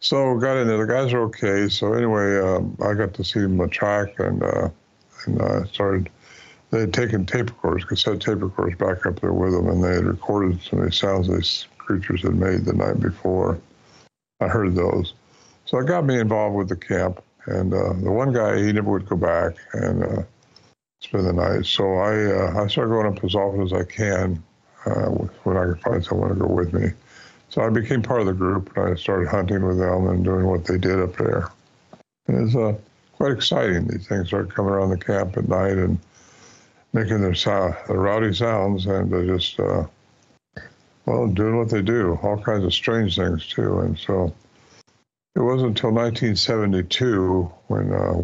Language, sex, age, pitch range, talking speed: English, male, 60-79, 95-110 Hz, 205 wpm